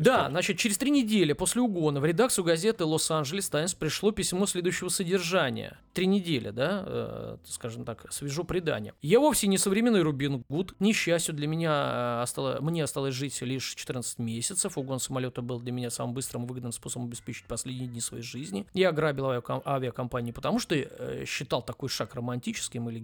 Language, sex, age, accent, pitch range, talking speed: Russian, male, 20-39, native, 120-165 Hz, 170 wpm